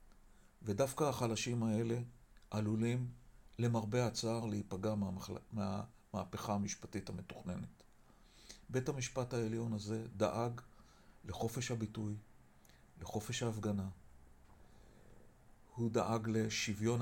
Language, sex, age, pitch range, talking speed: Hebrew, male, 40-59, 100-115 Hz, 80 wpm